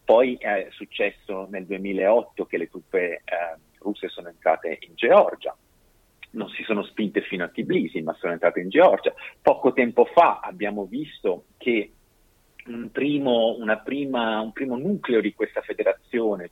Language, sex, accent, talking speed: Italian, male, native, 140 wpm